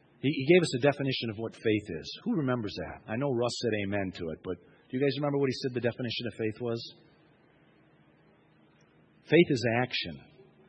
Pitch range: 115-145 Hz